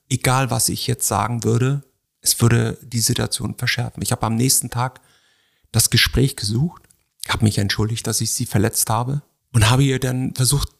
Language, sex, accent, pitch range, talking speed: German, male, German, 120-150 Hz, 180 wpm